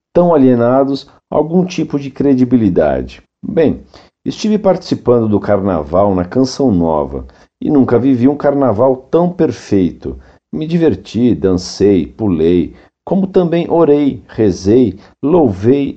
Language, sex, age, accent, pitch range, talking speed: Portuguese, male, 50-69, Brazilian, 110-150 Hz, 115 wpm